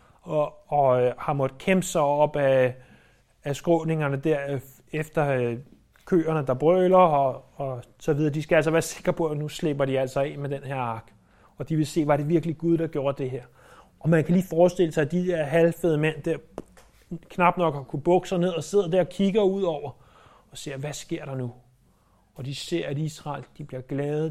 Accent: native